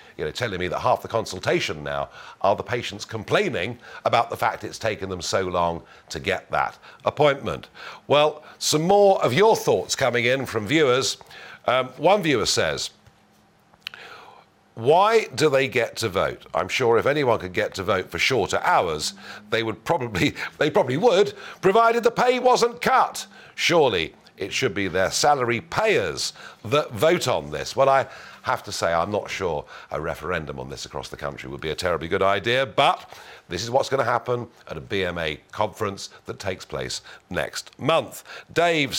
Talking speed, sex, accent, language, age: 180 wpm, male, British, English, 50-69